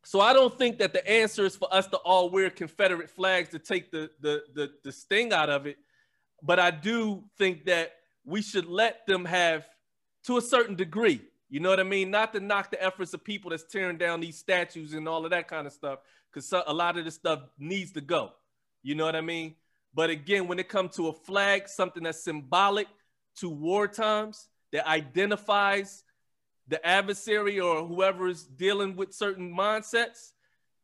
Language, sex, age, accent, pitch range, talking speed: English, male, 30-49, American, 160-200 Hz, 200 wpm